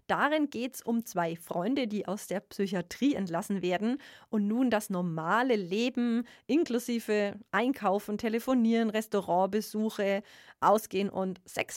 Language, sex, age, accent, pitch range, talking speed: German, female, 40-59, German, 180-245 Hz, 120 wpm